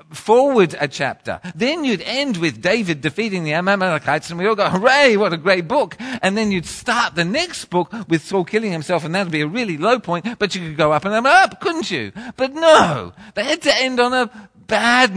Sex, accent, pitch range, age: male, British, 160-230 Hz, 40-59